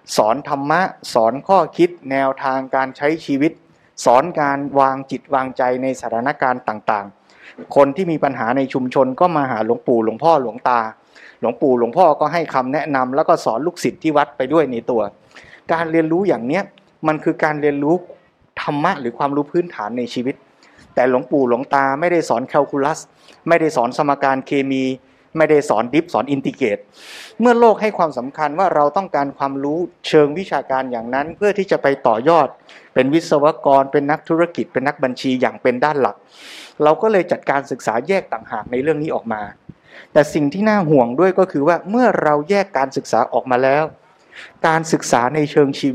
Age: 20-39